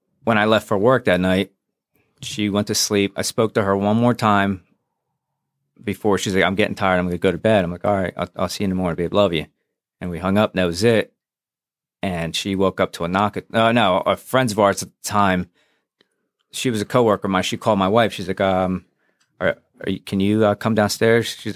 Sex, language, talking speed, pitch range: male, English, 250 wpm, 90-110 Hz